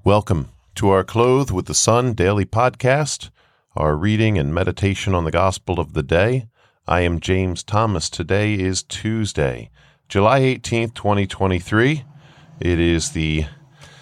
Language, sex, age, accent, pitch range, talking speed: English, male, 40-59, American, 85-110 Hz, 125 wpm